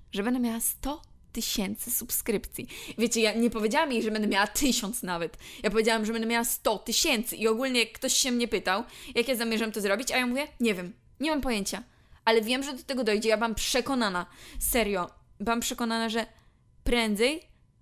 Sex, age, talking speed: female, 20-39, 190 wpm